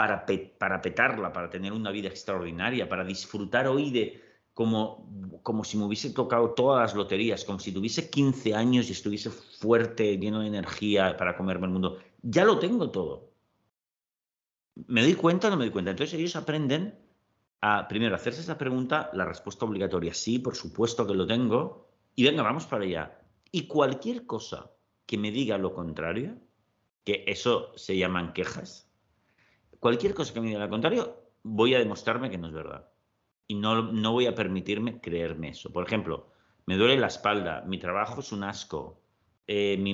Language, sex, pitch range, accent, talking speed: Spanish, male, 95-120 Hz, Spanish, 175 wpm